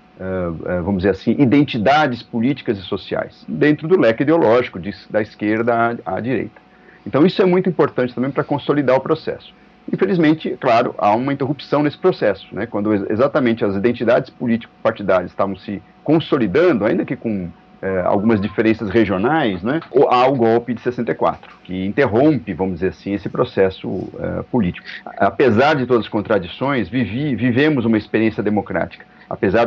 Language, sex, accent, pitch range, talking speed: Portuguese, male, Brazilian, 100-135 Hz, 160 wpm